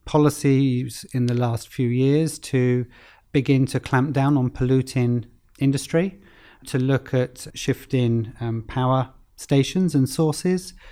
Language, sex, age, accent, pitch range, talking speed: English, male, 40-59, British, 120-145 Hz, 125 wpm